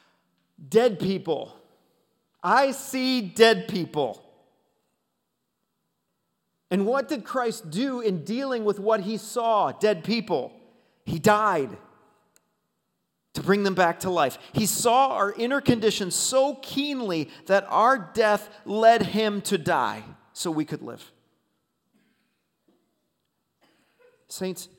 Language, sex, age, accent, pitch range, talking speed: English, male, 40-59, American, 150-230 Hz, 110 wpm